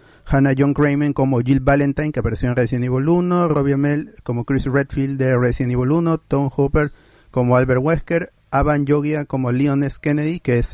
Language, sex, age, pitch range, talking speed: Spanish, male, 30-49, 125-145 Hz, 190 wpm